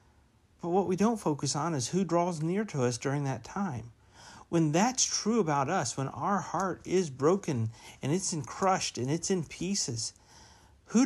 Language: English